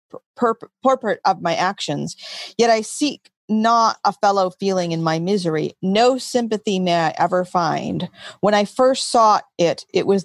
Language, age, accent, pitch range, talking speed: English, 40-59, American, 175-210 Hz, 165 wpm